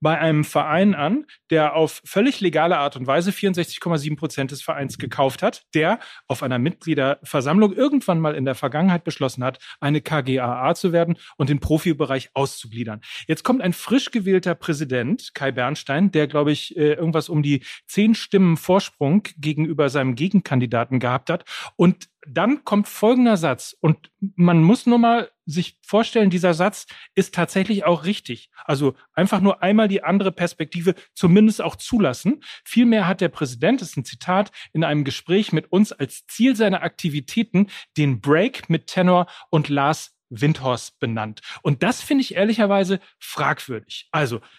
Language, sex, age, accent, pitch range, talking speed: German, male, 40-59, German, 150-200 Hz, 160 wpm